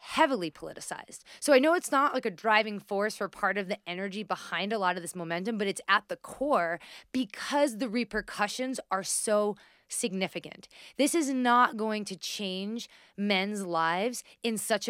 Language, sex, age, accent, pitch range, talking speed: English, female, 20-39, American, 200-260 Hz, 175 wpm